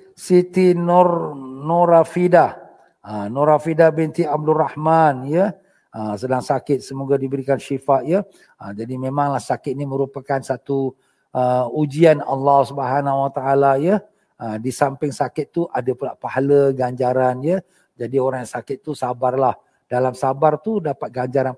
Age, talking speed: 50-69, 140 wpm